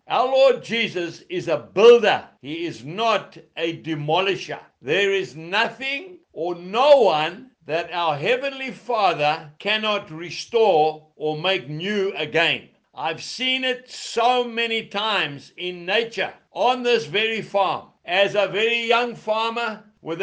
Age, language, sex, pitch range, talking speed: 60-79, English, male, 180-235 Hz, 135 wpm